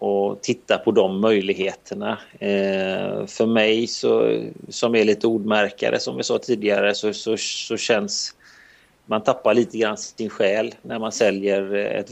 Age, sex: 30-49, male